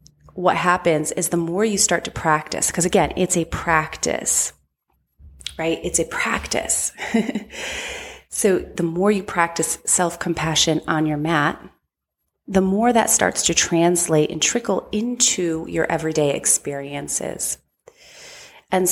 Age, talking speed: 30-49, 125 wpm